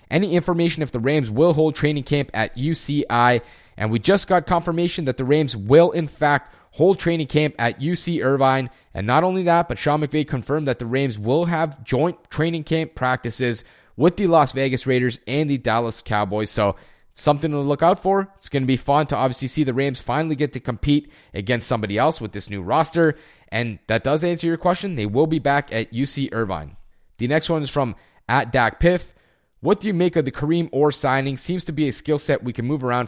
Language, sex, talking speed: English, male, 220 wpm